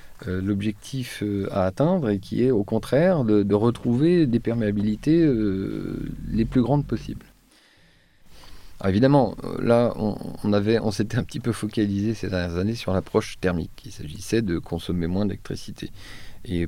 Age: 40-59